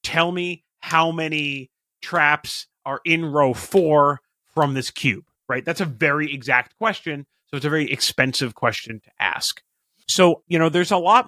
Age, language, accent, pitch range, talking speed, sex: 30-49, English, American, 125-155 Hz, 170 wpm, male